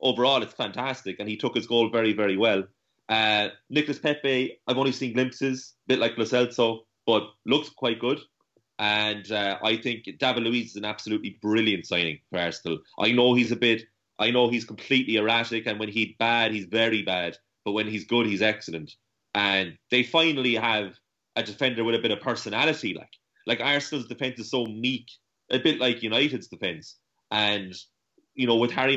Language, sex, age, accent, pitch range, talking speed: English, male, 30-49, Irish, 105-130 Hz, 185 wpm